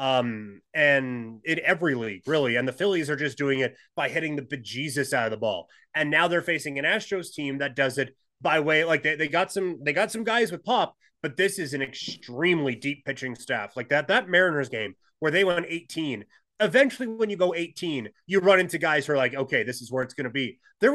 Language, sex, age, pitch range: English, male, 30-49, 135-180 Hz